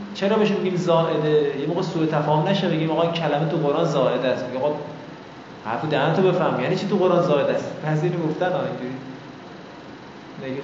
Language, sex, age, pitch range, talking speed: Persian, male, 20-39, 155-200 Hz, 185 wpm